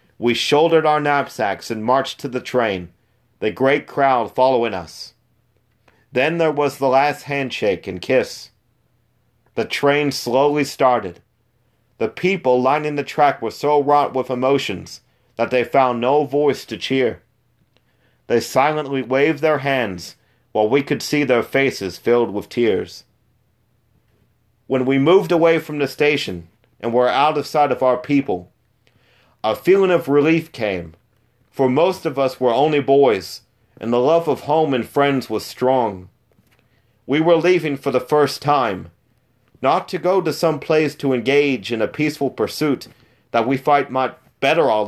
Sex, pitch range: male, 120-145 Hz